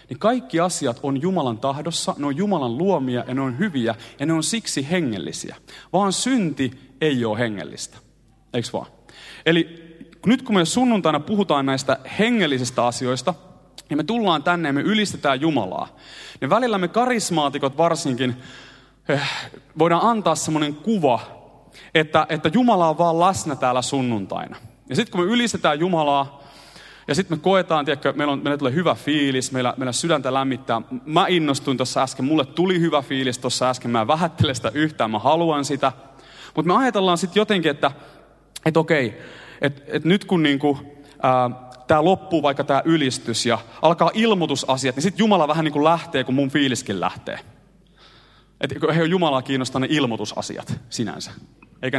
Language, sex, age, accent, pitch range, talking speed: Finnish, male, 30-49, native, 130-170 Hz, 160 wpm